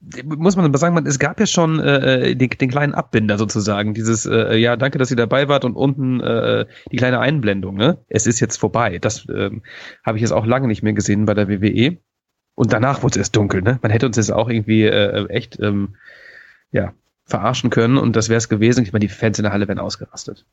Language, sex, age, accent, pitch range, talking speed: German, male, 30-49, German, 105-135 Hz, 235 wpm